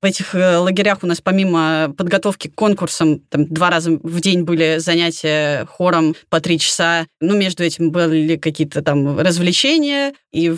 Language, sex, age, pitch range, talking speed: Russian, female, 20-39, 185-235 Hz, 160 wpm